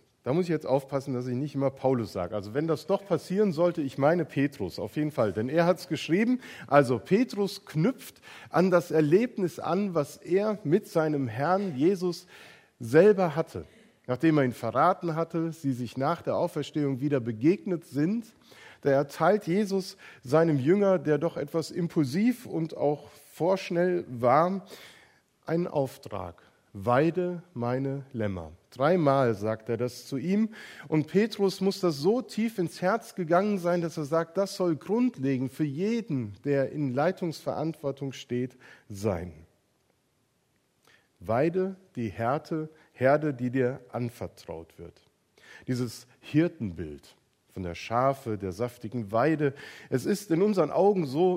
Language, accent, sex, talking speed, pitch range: German, German, male, 145 wpm, 130-180 Hz